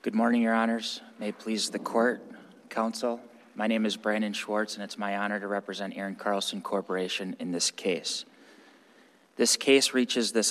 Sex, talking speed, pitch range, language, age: male, 175 wpm, 105-115 Hz, English, 20-39